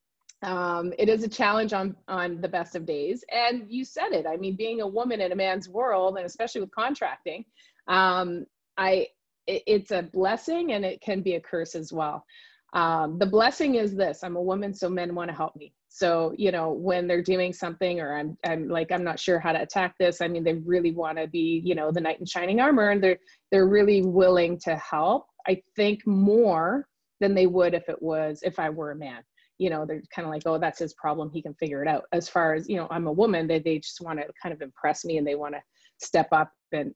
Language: English